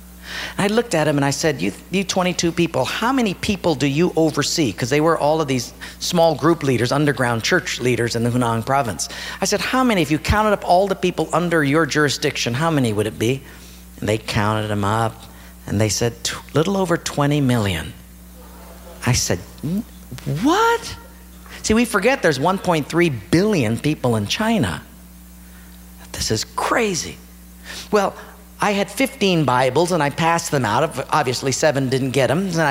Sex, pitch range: male, 110-180 Hz